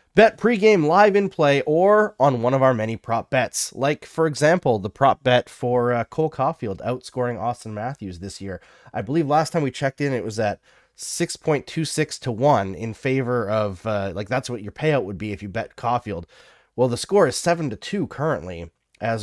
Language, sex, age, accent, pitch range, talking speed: English, male, 30-49, American, 110-150 Hz, 205 wpm